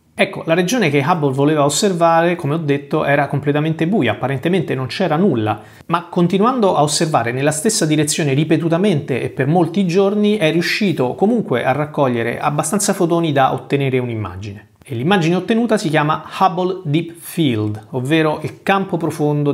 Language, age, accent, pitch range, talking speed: Italian, 30-49, native, 130-180 Hz, 155 wpm